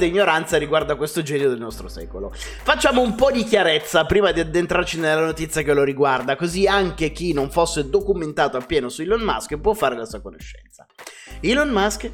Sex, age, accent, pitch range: male, 30-49, native, 150-215 Hz